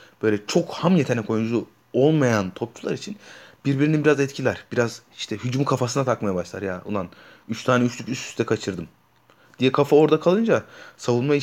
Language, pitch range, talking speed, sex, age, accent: Turkish, 115-150 Hz, 160 wpm, male, 30-49, native